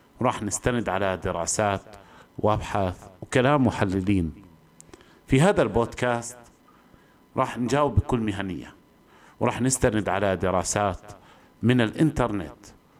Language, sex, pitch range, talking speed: Arabic, male, 95-120 Hz, 90 wpm